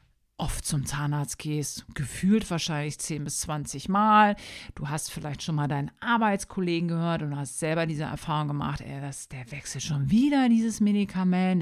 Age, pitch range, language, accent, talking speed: 50-69, 145-200 Hz, German, German, 165 wpm